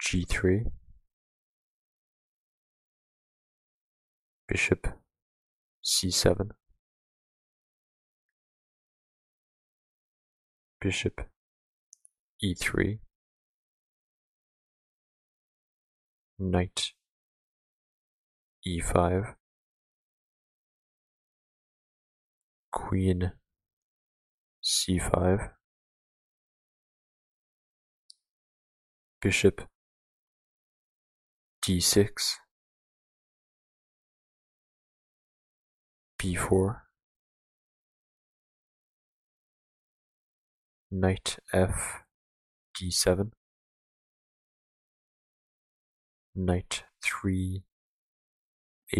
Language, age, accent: English, 50-69, American